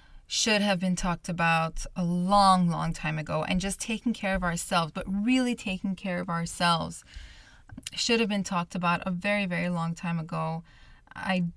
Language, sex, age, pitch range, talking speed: English, female, 20-39, 170-200 Hz, 175 wpm